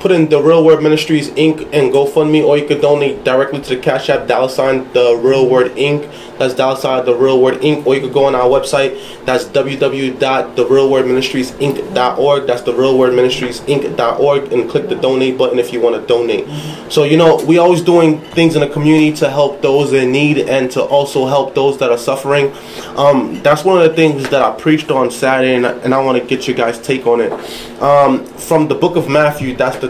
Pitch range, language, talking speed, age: 125-155 Hz, English, 215 wpm, 20-39